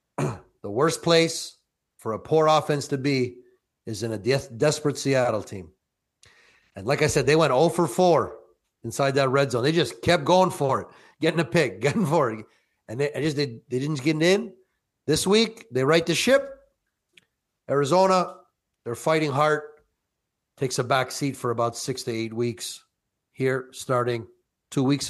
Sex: male